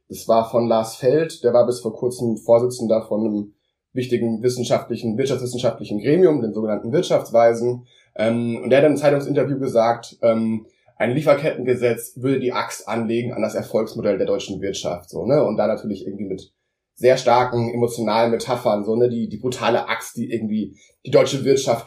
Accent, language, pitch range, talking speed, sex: German, German, 115-130 Hz, 170 wpm, male